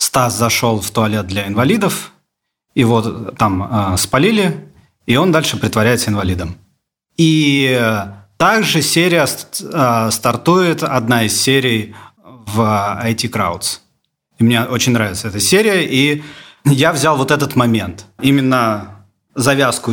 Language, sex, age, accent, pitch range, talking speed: Russian, male, 30-49, native, 110-145 Hz, 115 wpm